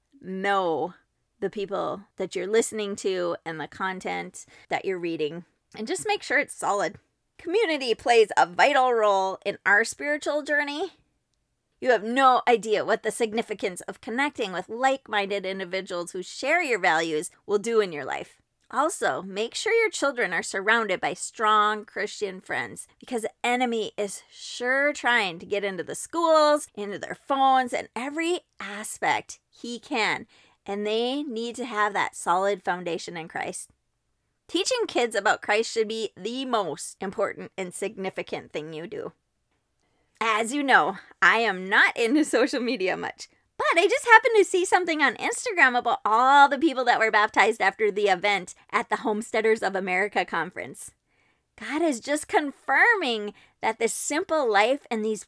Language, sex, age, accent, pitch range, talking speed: English, female, 30-49, American, 200-280 Hz, 160 wpm